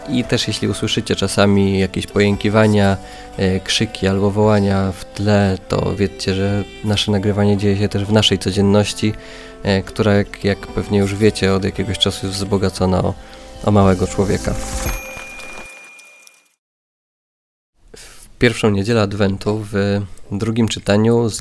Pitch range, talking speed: 95-105 Hz, 130 wpm